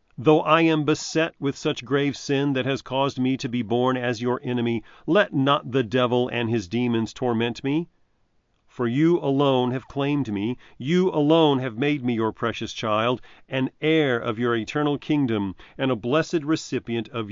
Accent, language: American, English